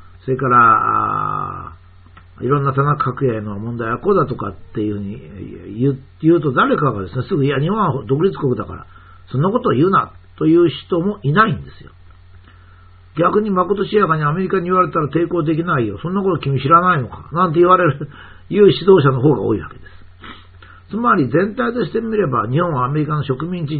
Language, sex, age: Japanese, male, 60-79